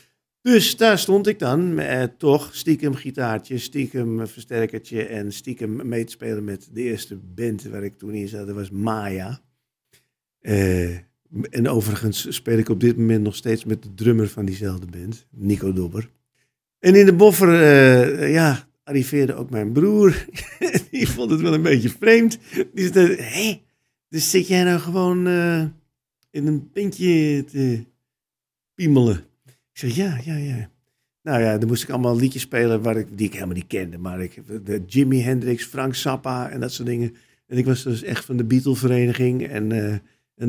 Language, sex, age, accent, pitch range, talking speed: Dutch, male, 50-69, Dutch, 110-145 Hz, 175 wpm